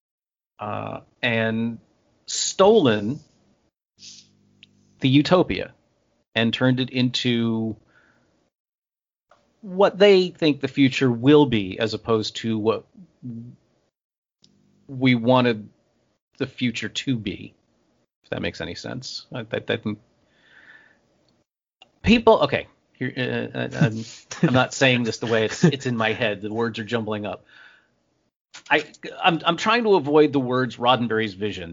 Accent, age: American, 40-59